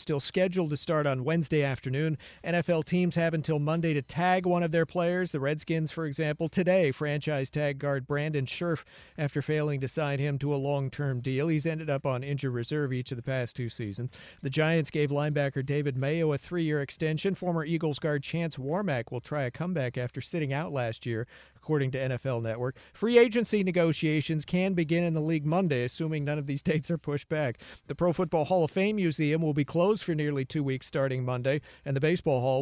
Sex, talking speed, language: male, 210 wpm, English